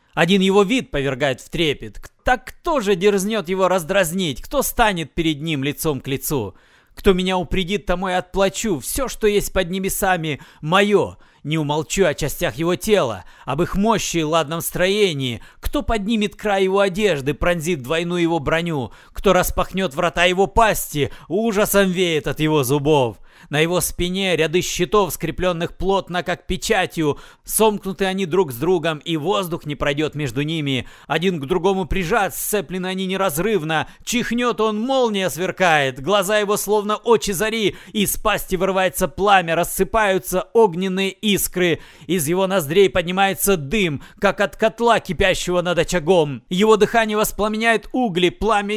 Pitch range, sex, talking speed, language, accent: 165-200 Hz, male, 150 wpm, Russian, native